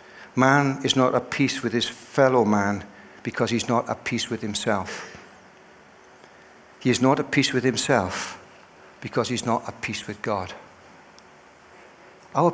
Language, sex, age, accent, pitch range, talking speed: English, male, 60-79, British, 105-135 Hz, 150 wpm